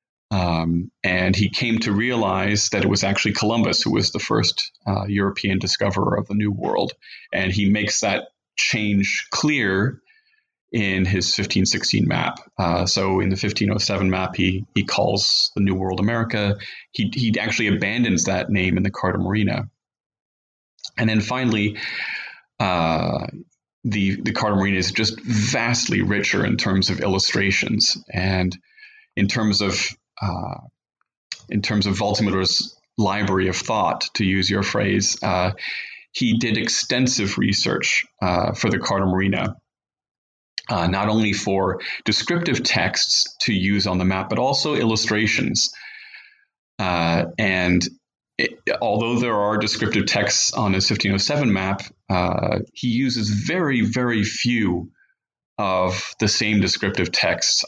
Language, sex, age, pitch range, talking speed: English, male, 30-49, 95-110 Hz, 140 wpm